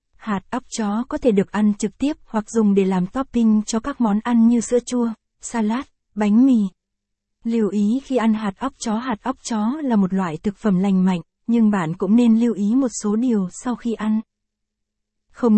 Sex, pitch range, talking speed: female, 200-245 Hz, 210 wpm